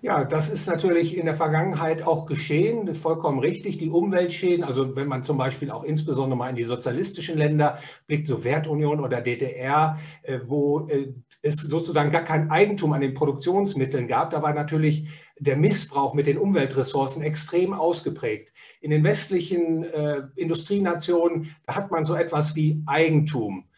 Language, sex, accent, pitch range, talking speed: English, male, German, 140-170 Hz, 155 wpm